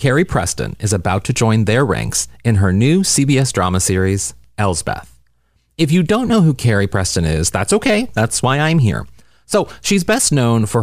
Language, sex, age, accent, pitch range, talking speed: English, male, 30-49, American, 95-130 Hz, 190 wpm